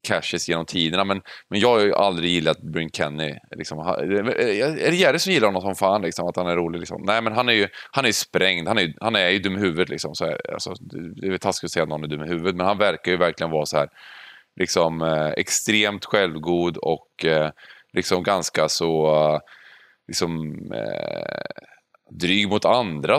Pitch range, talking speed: 80-100 Hz, 200 wpm